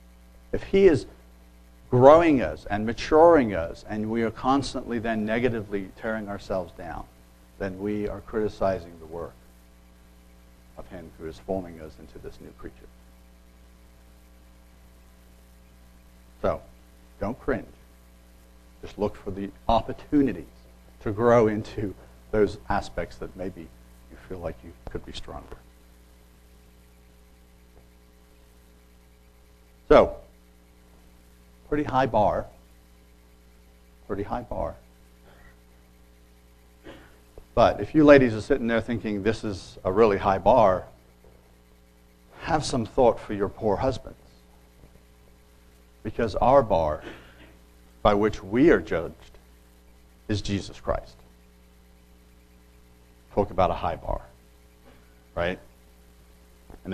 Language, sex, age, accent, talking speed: English, male, 60-79, American, 105 wpm